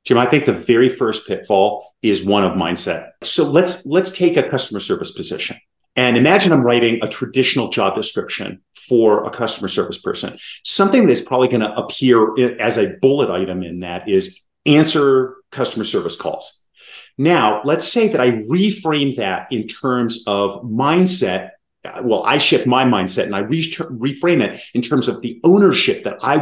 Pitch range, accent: 120-175 Hz, American